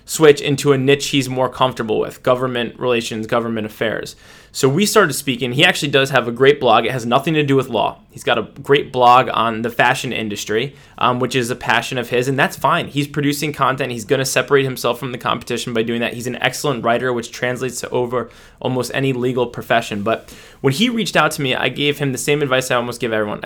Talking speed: 235 wpm